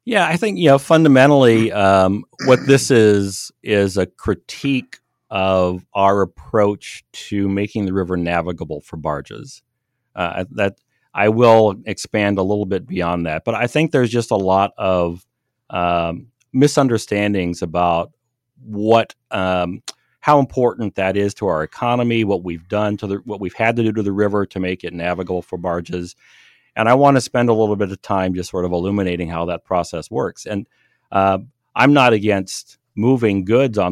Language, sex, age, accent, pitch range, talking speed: English, male, 40-59, American, 90-110 Hz, 175 wpm